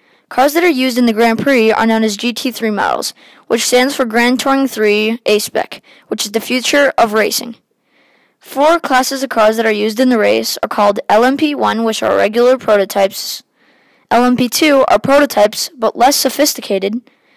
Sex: female